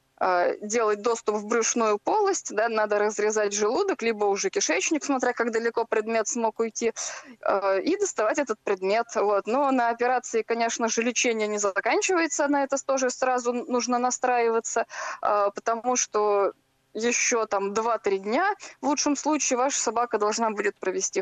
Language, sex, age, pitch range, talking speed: Russian, female, 20-39, 210-255 Hz, 145 wpm